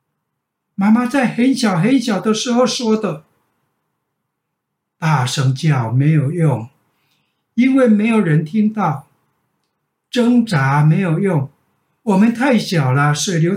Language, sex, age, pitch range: Chinese, male, 60-79, 145-215 Hz